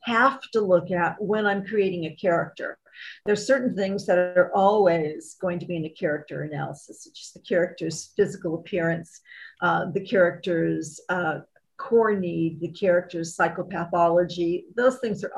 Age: 50-69